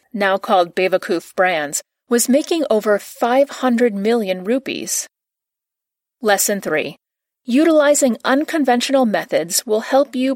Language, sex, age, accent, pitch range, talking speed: English, female, 40-59, American, 195-255 Hz, 105 wpm